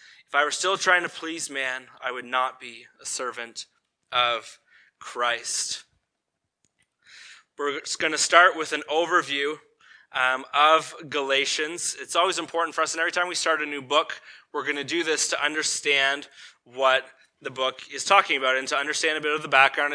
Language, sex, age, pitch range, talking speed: English, male, 20-39, 135-165 Hz, 180 wpm